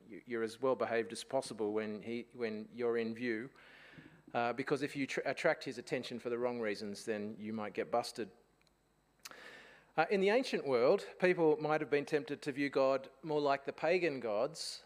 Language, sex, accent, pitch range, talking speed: English, male, Australian, 125-155 Hz, 190 wpm